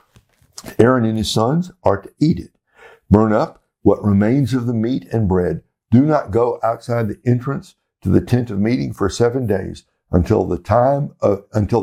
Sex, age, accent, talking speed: male, 60-79, American, 185 wpm